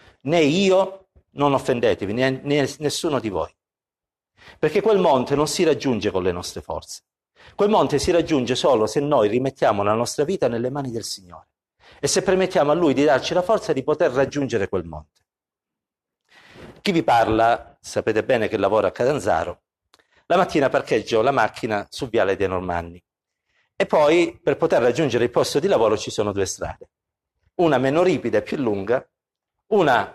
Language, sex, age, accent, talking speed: Italian, male, 50-69, native, 170 wpm